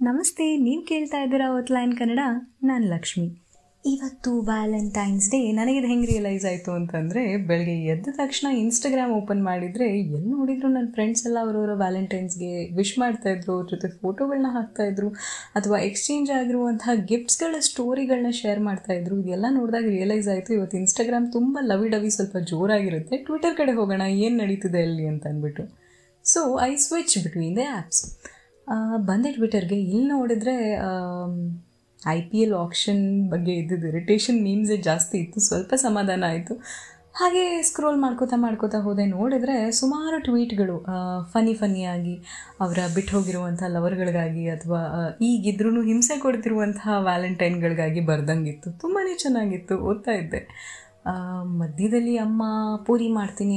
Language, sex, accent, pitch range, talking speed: Kannada, female, native, 185-245 Hz, 125 wpm